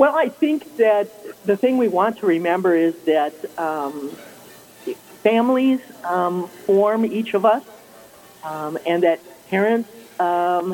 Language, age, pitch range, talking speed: English, 50-69, 170-220 Hz, 135 wpm